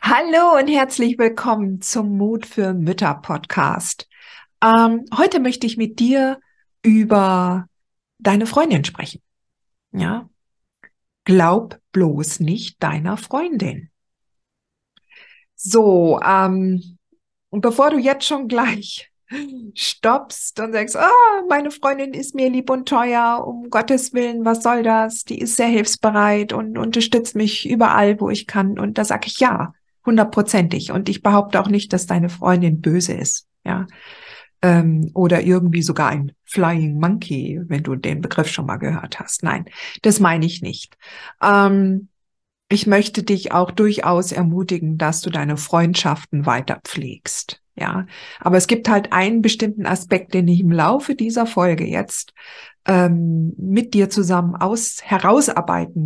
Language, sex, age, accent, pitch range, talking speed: German, female, 50-69, German, 180-235 Hz, 140 wpm